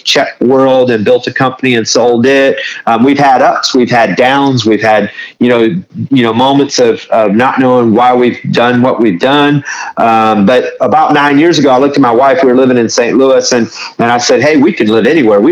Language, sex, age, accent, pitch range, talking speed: English, male, 40-59, American, 110-135 Hz, 230 wpm